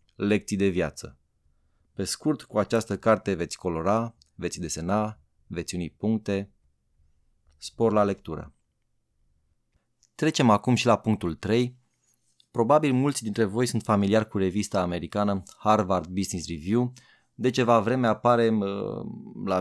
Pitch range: 95-120 Hz